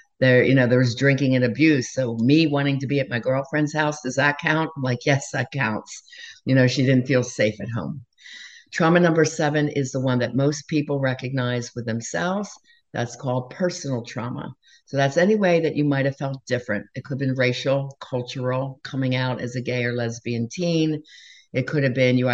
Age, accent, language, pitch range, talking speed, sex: 50-69, American, English, 125-150 Hz, 205 wpm, female